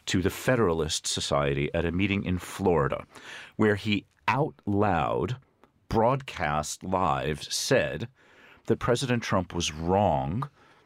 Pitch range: 85-105 Hz